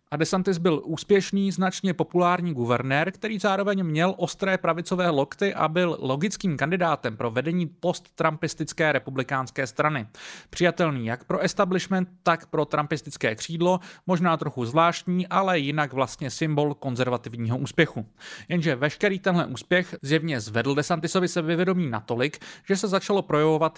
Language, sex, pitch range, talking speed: English, male, 145-180 Hz, 135 wpm